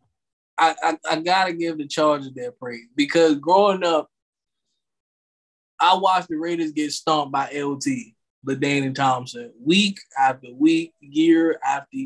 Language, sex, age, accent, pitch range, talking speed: English, male, 20-39, American, 140-185 Hz, 140 wpm